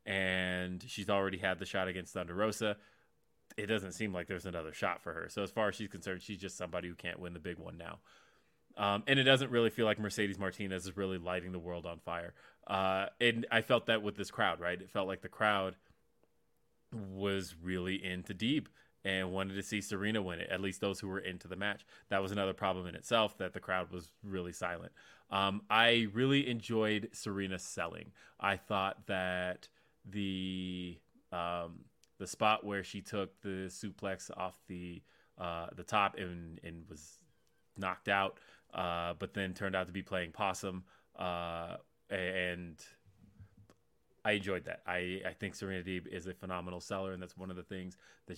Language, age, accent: English, 20-39, American